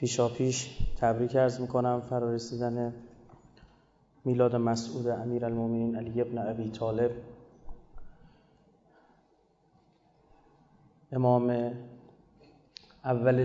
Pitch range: 120-130 Hz